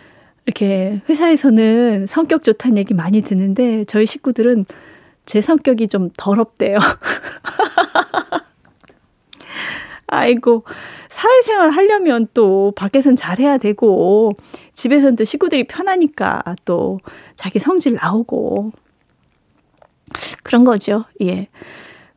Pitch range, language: 195-260 Hz, Korean